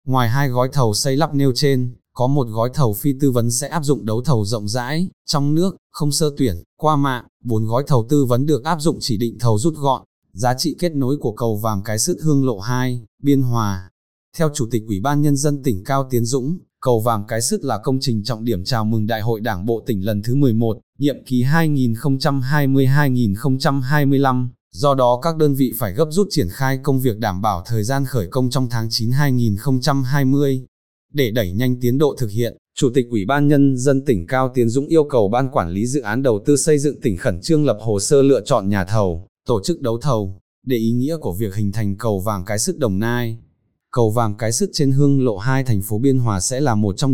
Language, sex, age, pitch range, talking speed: Vietnamese, male, 20-39, 110-140 Hz, 230 wpm